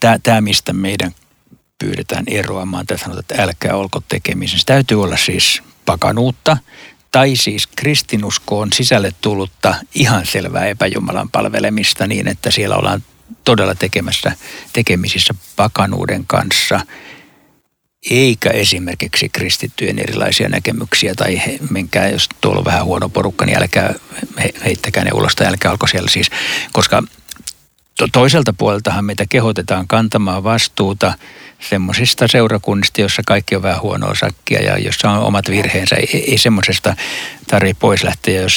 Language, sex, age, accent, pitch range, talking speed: Finnish, male, 60-79, native, 95-115 Hz, 130 wpm